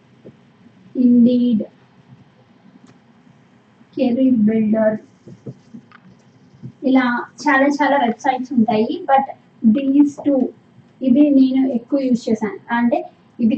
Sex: female